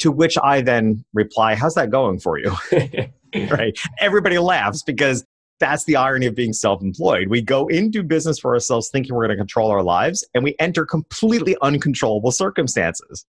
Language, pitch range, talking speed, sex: English, 115-160 Hz, 175 wpm, male